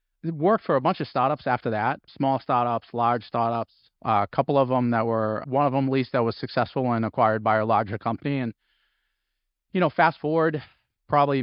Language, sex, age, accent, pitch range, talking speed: English, male, 30-49, American, 115-135 Hz, 205 wpm